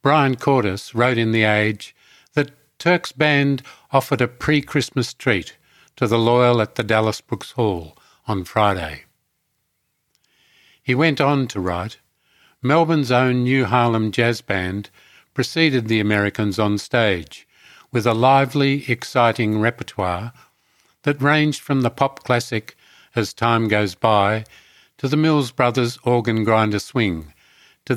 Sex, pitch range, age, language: male, 105-135 Hz, 50-69, English